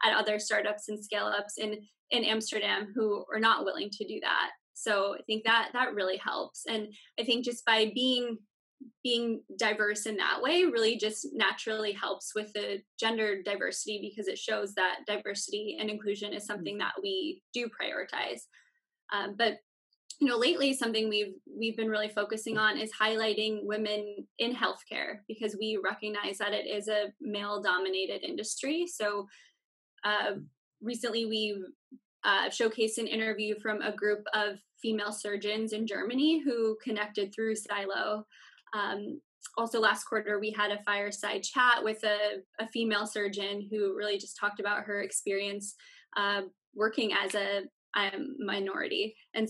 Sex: female